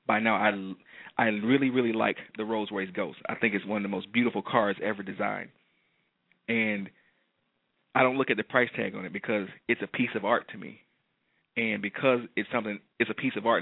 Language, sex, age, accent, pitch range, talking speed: English, male, 30-49, American, 105-130 Hz, 215 wpm